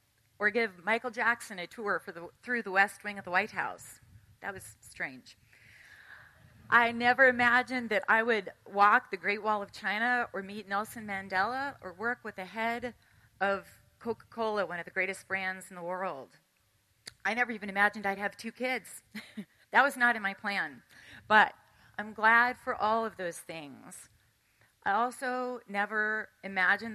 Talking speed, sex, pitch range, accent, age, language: 170 wpm, female, 180-230 Hz, American, 30-49, English